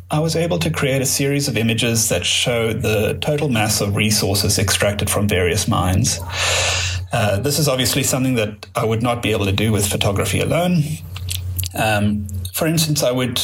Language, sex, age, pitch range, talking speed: English, male, 30-49, 95-125 Hz, 185 wpm